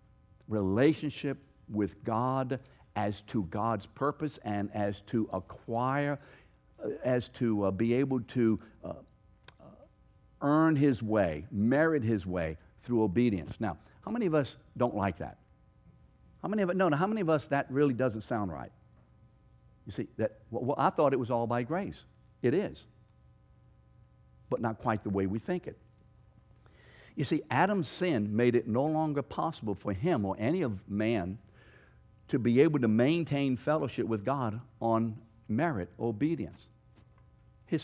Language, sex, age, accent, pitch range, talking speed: English, male, 60-79, American, 100-140 Hz, 150 wpm